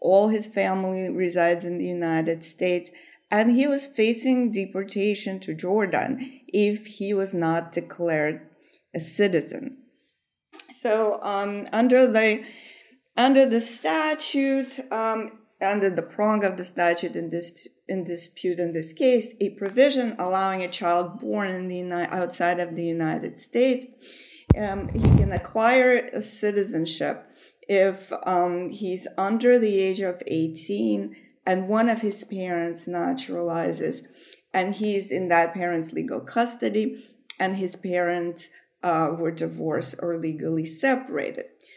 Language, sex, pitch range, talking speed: English, female, 175-220 Hz, 130 wpm